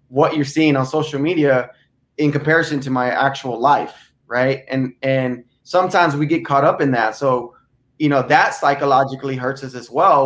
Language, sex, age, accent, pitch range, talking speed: English, male, 20-39, American, 135-170 Hz, 180 wpm